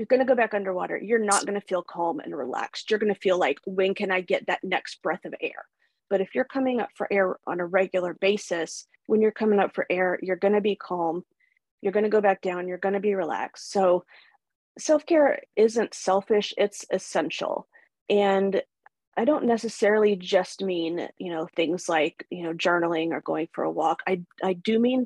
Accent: American